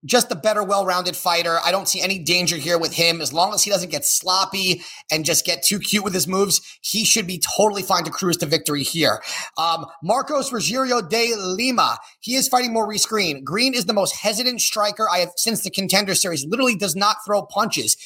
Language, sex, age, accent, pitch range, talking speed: English, male, 30-49, American, 175-220 Hz, 215 wpm